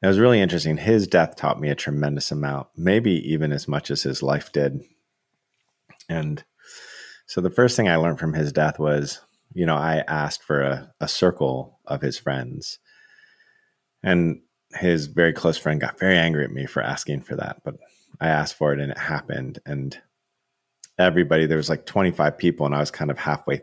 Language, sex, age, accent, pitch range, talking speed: English, male, 30-49, American, 70-85 Hz, 195 wpm